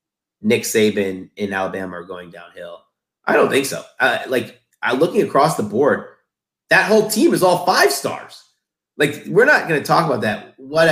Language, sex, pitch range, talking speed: English, male, 110-155 Hz, 185 wpm